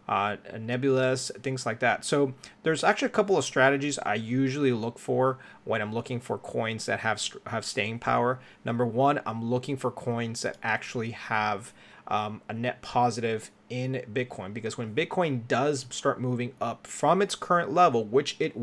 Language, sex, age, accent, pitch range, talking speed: English, male, 30-49, American, 115-135 Hz, 175 wpm